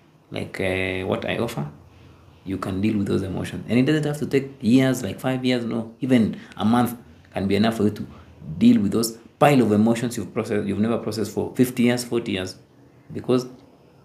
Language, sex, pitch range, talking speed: English, male, 100-130 Hz, 200 wpm